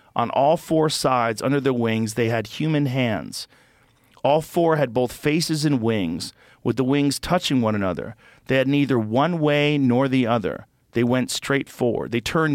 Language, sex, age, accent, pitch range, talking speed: English, male, 40-59, American, 120-140 Hz, 180 wpm